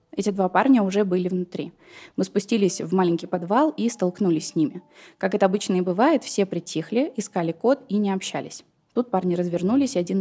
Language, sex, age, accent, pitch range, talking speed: Russian, female, 20-39, native, 180-240 Hz, 190 wpm